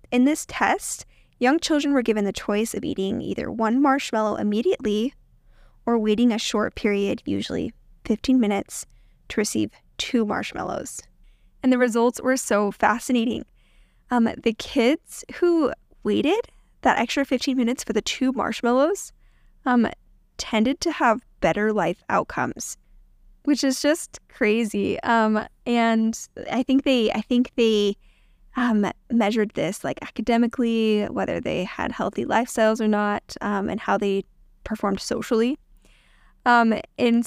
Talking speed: 135 wpm